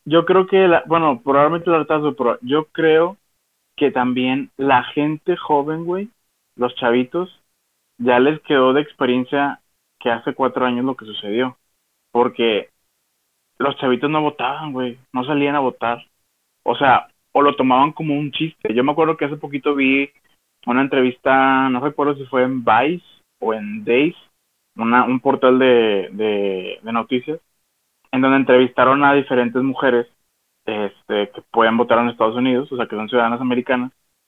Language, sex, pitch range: Spanish, male, 115-145 Hz